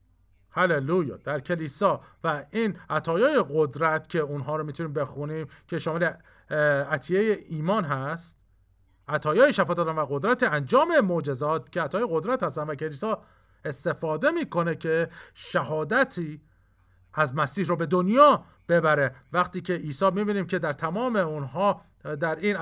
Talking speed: 135 wpm